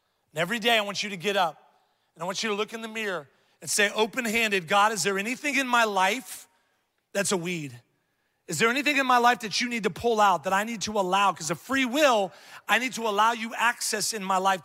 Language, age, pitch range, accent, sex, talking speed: English, 30-49, 155-200 Hz, American, male, 245 wpm